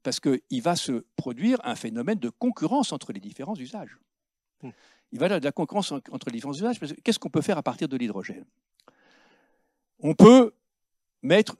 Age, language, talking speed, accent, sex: 60-79, French, 195 wpm, French, male